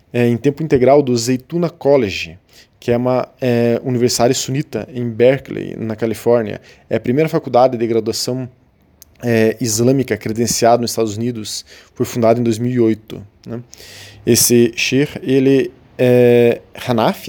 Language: Portuguese